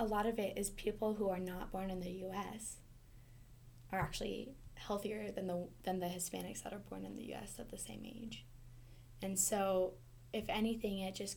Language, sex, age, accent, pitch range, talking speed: English, female, 10-29, American, 125-200 Hz, 205 wpm